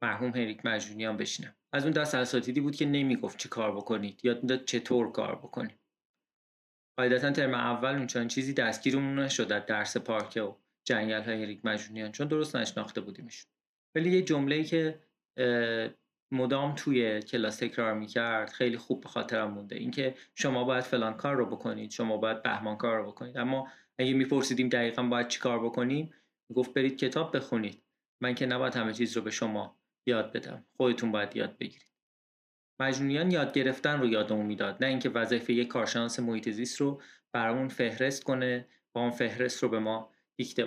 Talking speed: 170 wpm